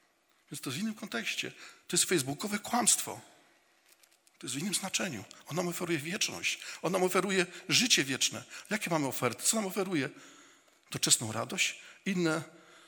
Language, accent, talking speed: Polish, native, 155 wpm